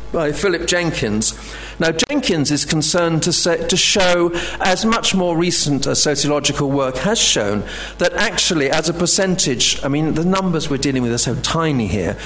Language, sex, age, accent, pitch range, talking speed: English, male, 50-69, British, 125-165 Hz, 170 wpm